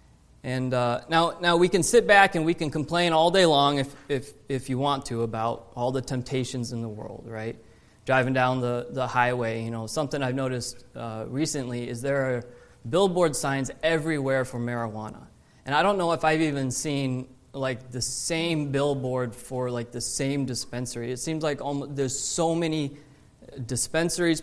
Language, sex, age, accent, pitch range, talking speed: English, male, 20-39, American, 130-165 Hz, 180 wpm